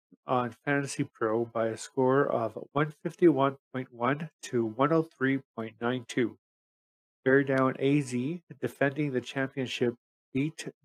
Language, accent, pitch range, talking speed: English, American, 115-140 Hz, 95 wpm